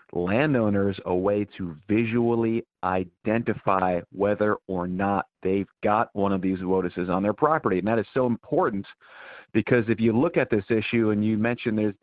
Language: English